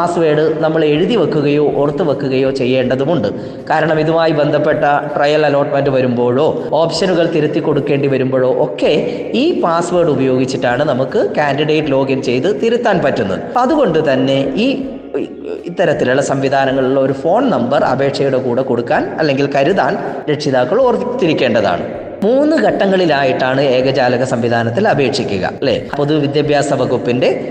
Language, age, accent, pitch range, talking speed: Malayalam, 20-39, native, 135-185 Hz, 110 wpm